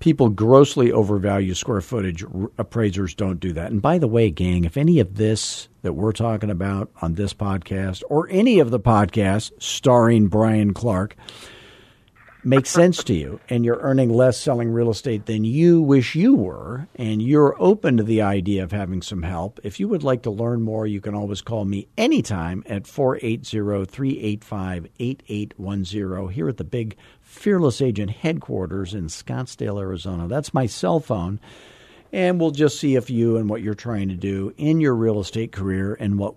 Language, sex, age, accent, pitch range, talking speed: English, male, 50-69, American, 100-130 Hz, 180 wpm